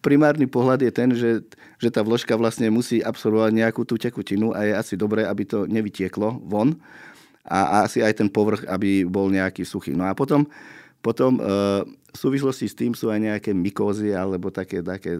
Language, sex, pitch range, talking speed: Slovak, male, 100-115 Hz, 190 wpm